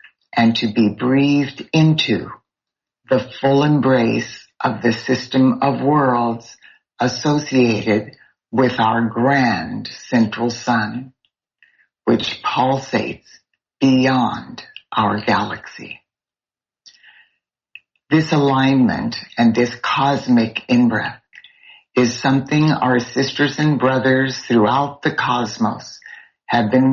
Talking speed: 90 wpm